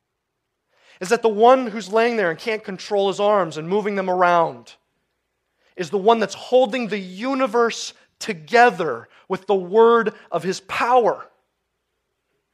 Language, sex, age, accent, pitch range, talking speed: English, male, 30-49, American, 210-260 Hz, 145 wpm